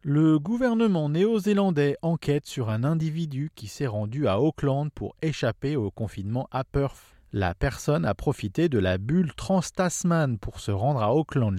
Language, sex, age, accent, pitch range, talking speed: English, male, 40-59, French, 105-155 Hz, 160 wpm